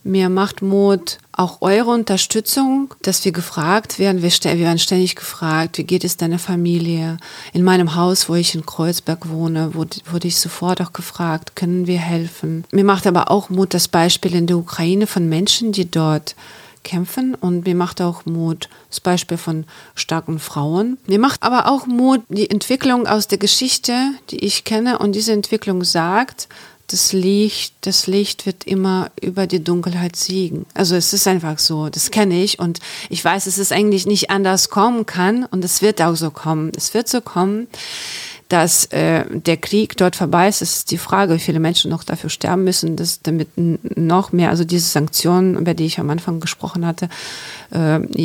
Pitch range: 165-195 Hz